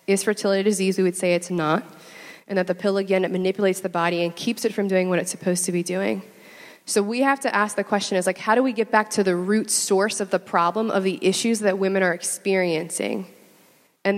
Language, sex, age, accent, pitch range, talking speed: English, female, 20-39, American, 180-215 Hz, 240 wpm